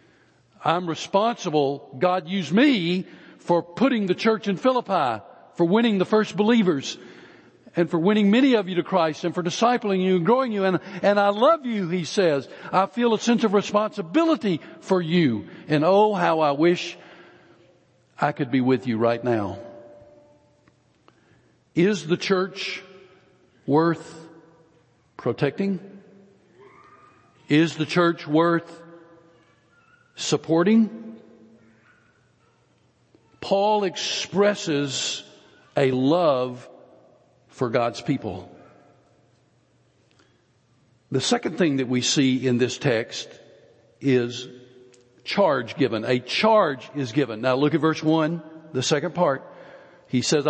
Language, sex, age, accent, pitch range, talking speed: English, male, 60-79, American, 135-195 Hz, 120 wpm